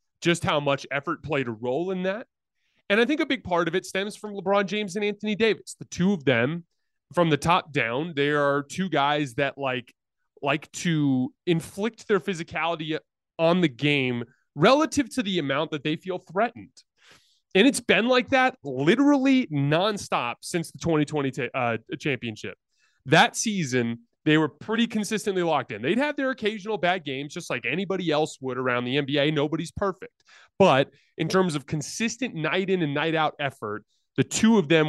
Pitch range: 140-200 Hz